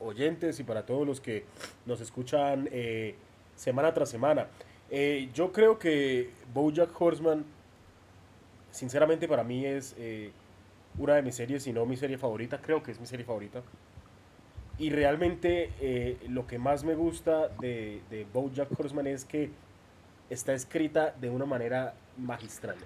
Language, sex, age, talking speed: Spanish, male, 20-39, 150 wpm